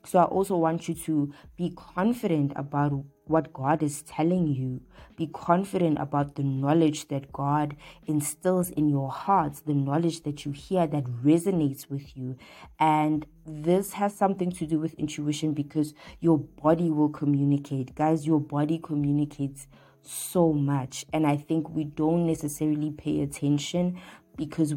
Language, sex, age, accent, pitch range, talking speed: English, female, 20-39, South African, 145-170 Hz, 150 wpm